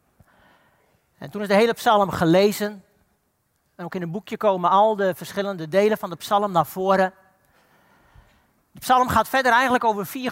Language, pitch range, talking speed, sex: Dutch, 190-245 Hz, 170 wpm, male